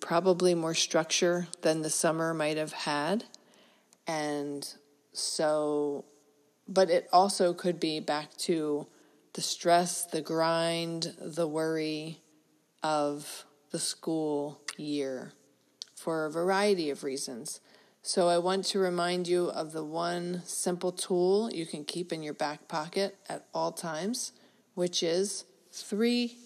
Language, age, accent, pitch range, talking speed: English, 40-59, American, 155-185 Hz, 130 wpm